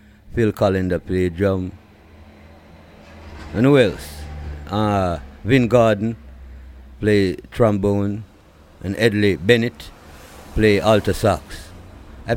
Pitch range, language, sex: 90-120 Hz, English, male